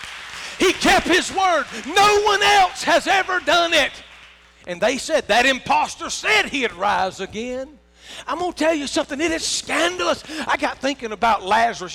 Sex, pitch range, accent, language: male, 220-310 Hz, American, English